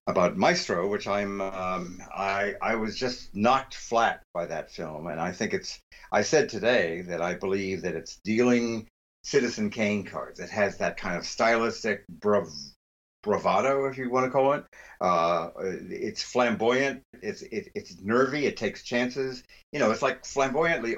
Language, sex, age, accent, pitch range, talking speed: English, male, 60-79, American, 95-135 Hz, 165 wpm